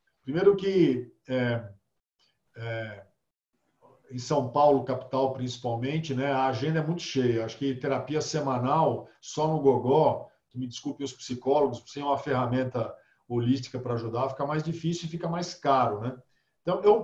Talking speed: 155 wpm